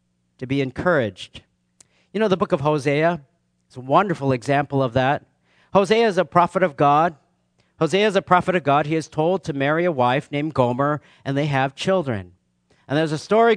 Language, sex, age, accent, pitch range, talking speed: English, male, 50-69, American, 130-195 Hz, 195 wpm